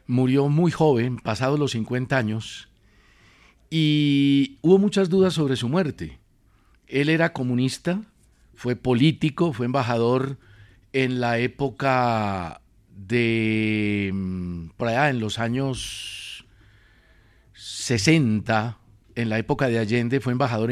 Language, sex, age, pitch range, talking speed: Spanish, male, 50-69, 110-145 Hz, 110 wpm